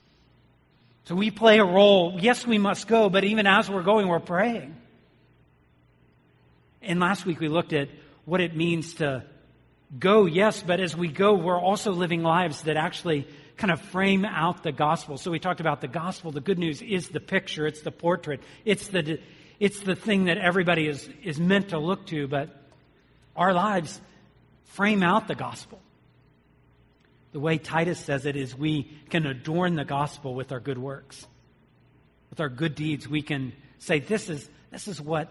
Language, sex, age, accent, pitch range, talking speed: English, male, 40-59, American, 145-180 Hz, 180 wpm